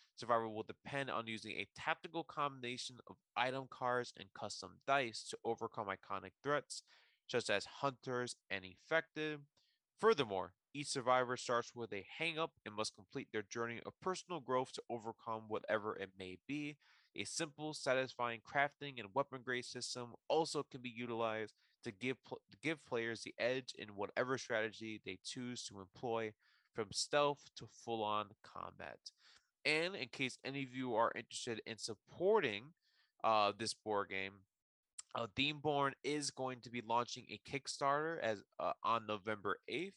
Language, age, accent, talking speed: English, 20-39, American, 150 wpm